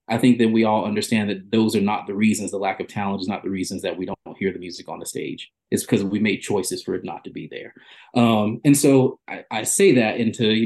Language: English